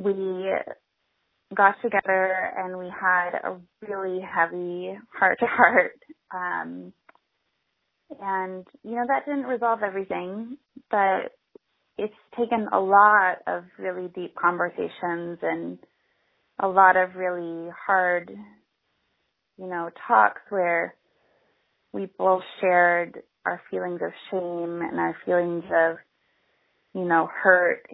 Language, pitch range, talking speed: English, 165-195 Hz, 110 wpm